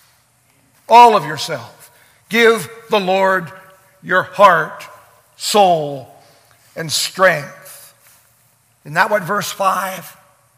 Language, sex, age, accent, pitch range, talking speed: English, male, 60-79, American, 140-195 Hz, 90 wpm